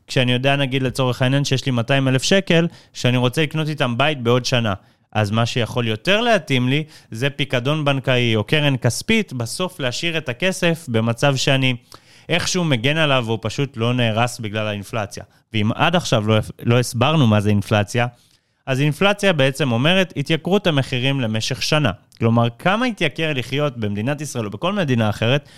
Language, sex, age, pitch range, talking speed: Hebrew, male, 30-49, 115-150 Hz, 165 wpm